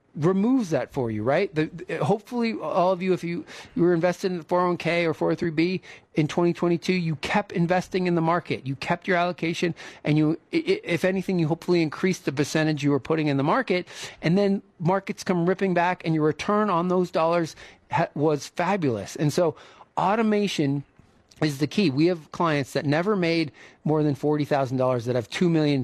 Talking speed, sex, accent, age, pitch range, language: 195 wpm, male, American, 40-59, 145-175 Hz, English